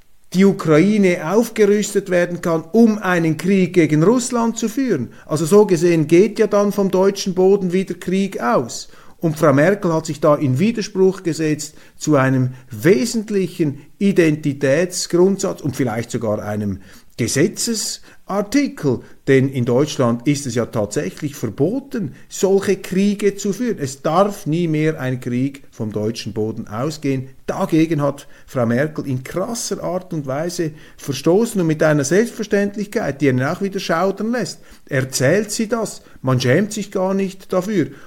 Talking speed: 150 wpm